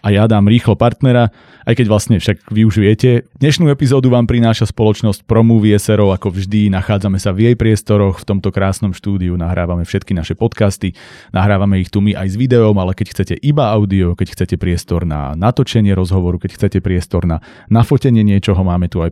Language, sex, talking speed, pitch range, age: Slovak, male, 190 wpm, 90-110 Hz, 30-49